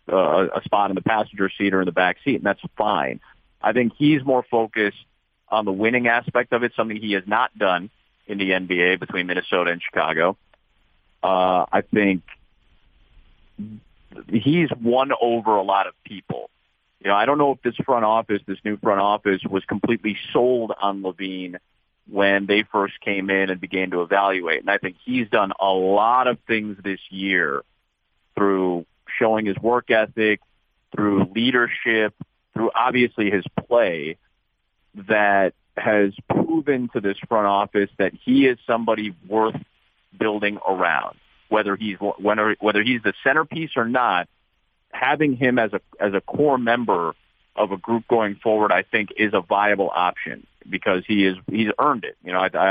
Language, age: English, 40-59